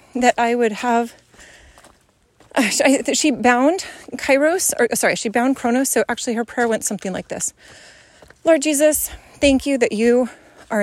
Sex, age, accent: female, 30-49, American